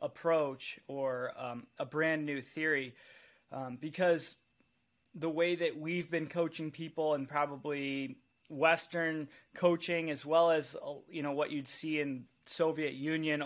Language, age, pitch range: English, 20-39, 140-165 Hz